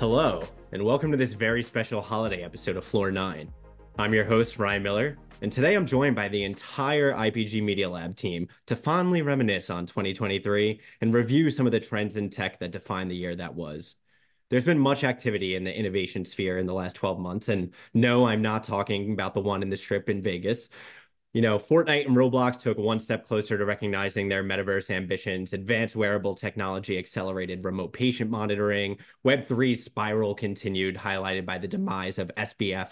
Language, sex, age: English, male, 30-49